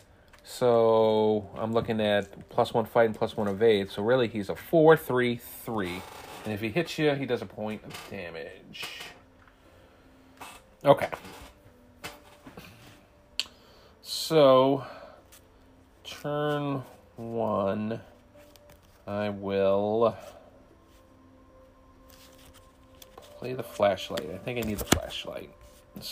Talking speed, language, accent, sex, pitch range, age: 100 wpm, English, American, male, 95-120 Hz, 40-59